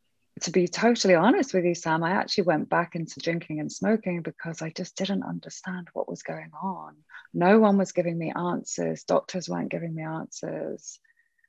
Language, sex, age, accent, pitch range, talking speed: English, female, 20-39, British, 155-210 Hz, 185 wpm